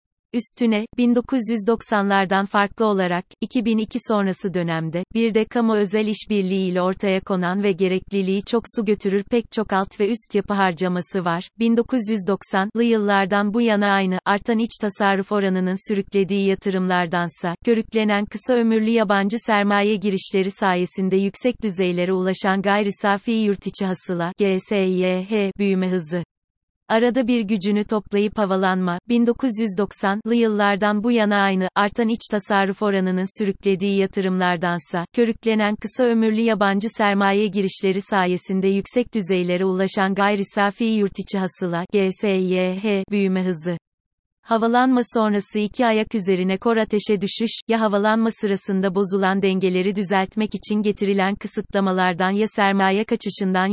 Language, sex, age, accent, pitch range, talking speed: Turkish, female, 30-49, native, 190-220 Hz, 120 wpm